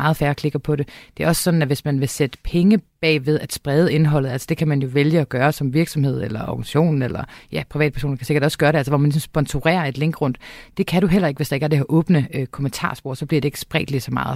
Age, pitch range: 30-49, 135-160 Hz